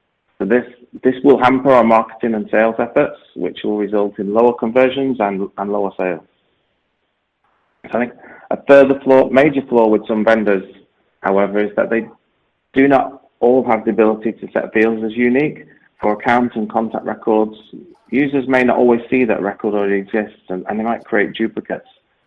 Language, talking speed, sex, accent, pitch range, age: English, 180 wpm, male, British, 100-120 Hz, 30-49